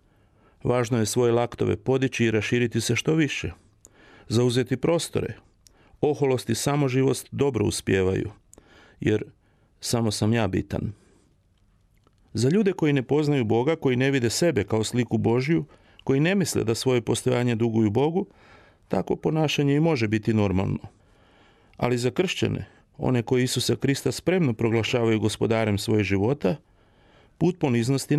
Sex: male